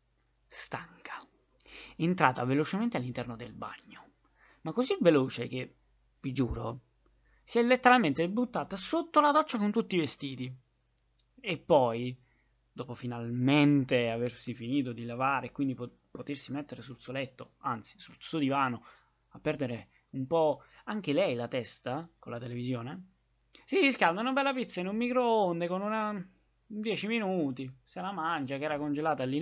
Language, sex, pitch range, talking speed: Italian, male, 120-165 Hz, 150 wpm